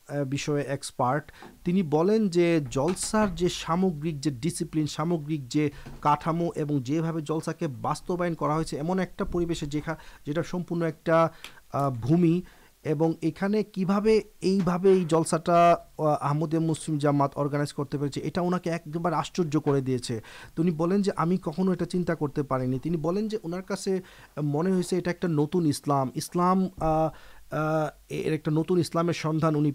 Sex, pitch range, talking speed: male, 145-175 Hz, 95 wpm